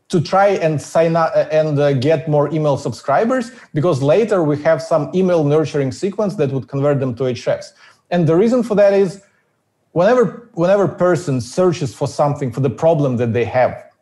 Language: English